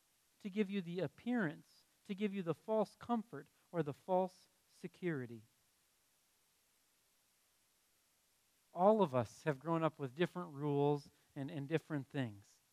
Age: 40-59